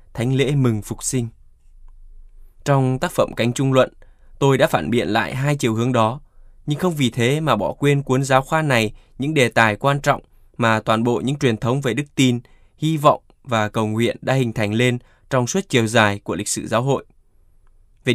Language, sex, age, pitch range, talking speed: Vietnamese, male, 10-29, 110-140 Hz, 210 wpm